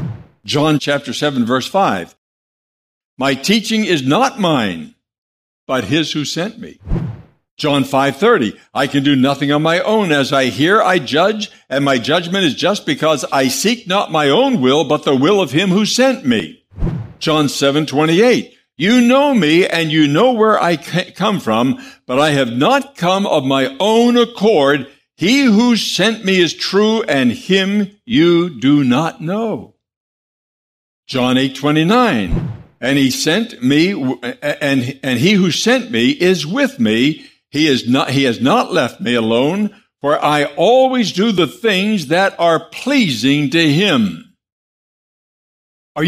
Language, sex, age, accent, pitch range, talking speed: English, male, 60-79, American, 140-215 Hz, 160 wpm